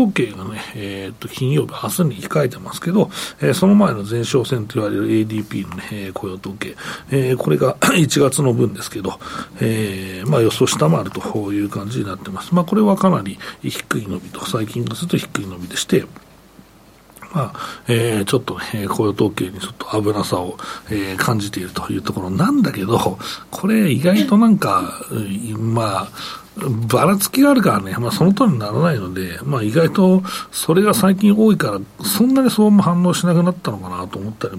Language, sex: Japanese, male